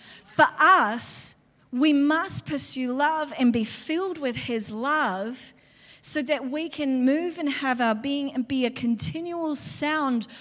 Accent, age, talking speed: Australian, 40-59, 150 wpm